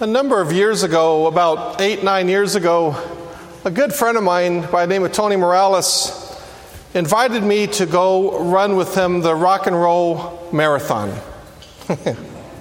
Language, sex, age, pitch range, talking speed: English, male, 40-59, 175-230 Hz, 155 wpm